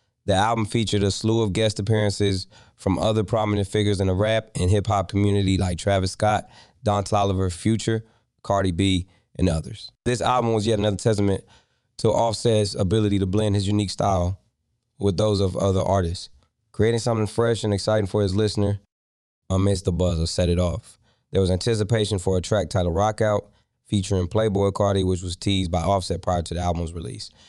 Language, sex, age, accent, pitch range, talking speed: English, male, 20-39, American, 95-110 Hz, 185 wpm